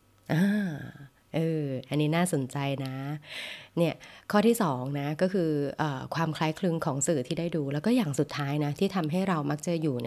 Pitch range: 140-180 Hz